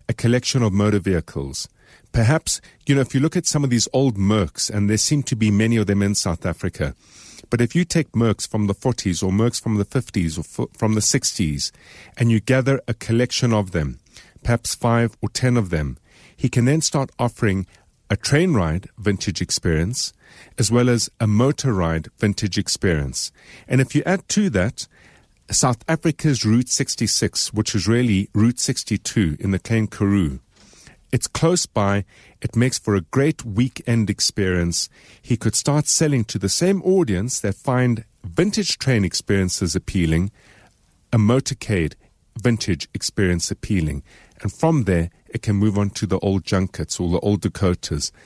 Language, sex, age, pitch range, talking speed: English, male, 50-69, 95-125 Hz, 175 wpm